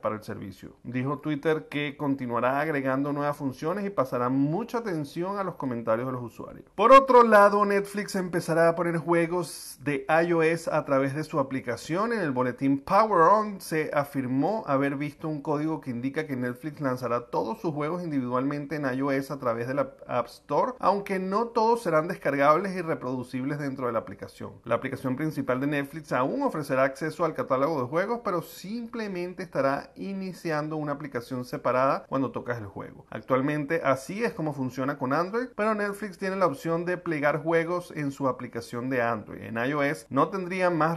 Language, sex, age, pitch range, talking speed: Spanish, male, 30-49, 130-170 Hz, 180 wpm